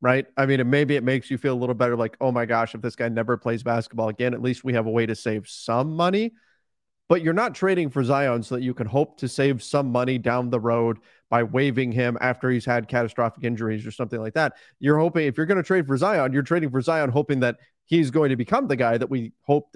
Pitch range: 120-150 Hz